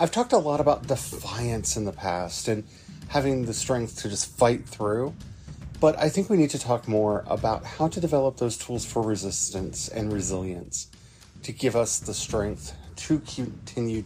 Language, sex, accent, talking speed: English, male, American, 180 wpm